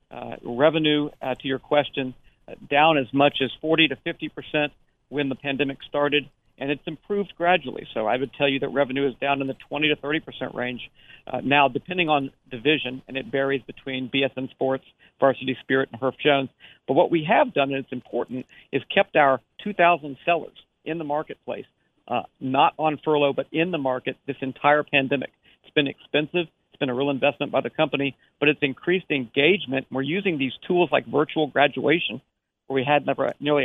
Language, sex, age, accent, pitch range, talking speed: English, male, 50-69, American, 135-155 Hz, 190 wpm